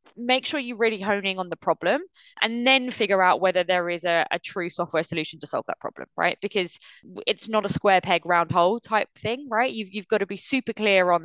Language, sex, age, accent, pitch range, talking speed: English, female, 20-39, British, 175-235 Hz, 235 wpm